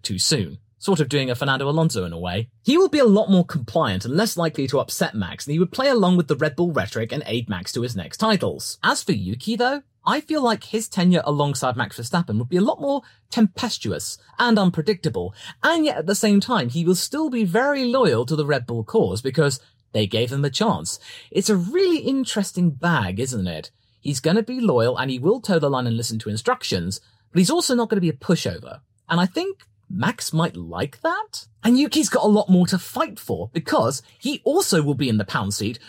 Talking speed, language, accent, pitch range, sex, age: 235 wpm, English, British, 140-225 Hz, male, 30-49